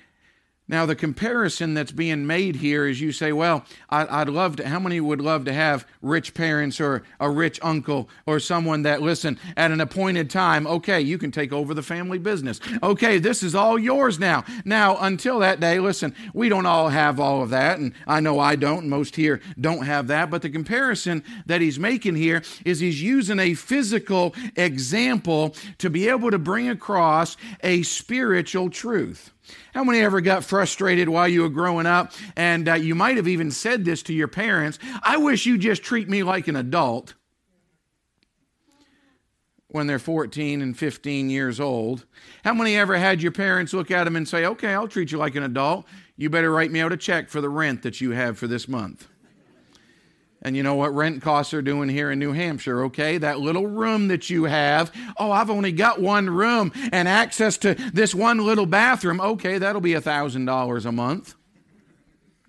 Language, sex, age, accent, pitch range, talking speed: English, male, 50-69, American, 150-200 Hz, 195 wpm